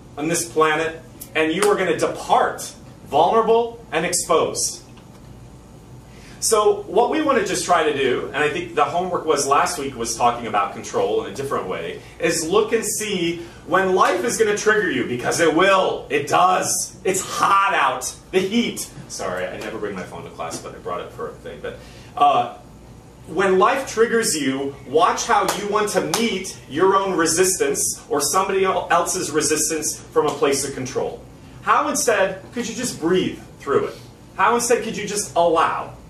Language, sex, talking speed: English, male, 180 wpm